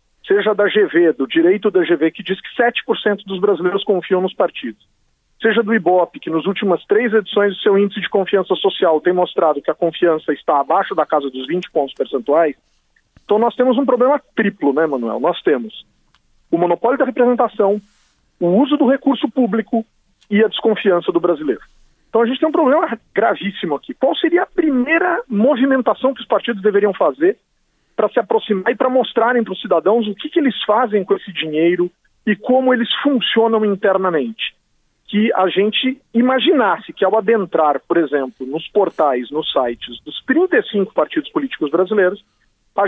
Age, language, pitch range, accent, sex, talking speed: 40-59, Portuguese, 185-260 Hz, Brazilian, male, 175 wpm